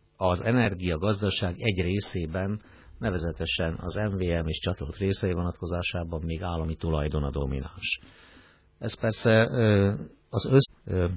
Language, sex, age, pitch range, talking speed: Hungarian, male, 50-69, 80-105 Hz, 105 wpm